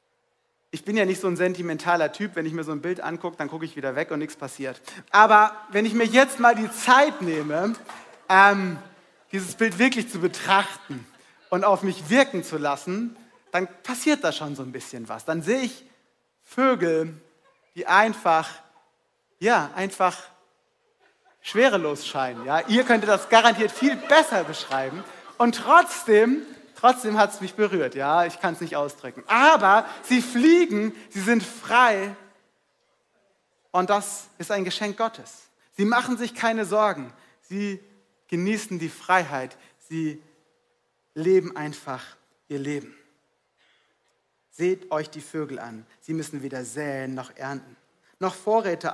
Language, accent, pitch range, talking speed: German, German, 155-225 Hz, 150 wpm